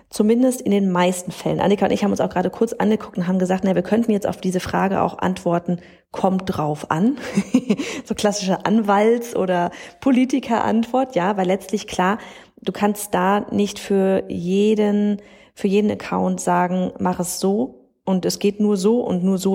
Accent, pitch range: German, 180-210 Hz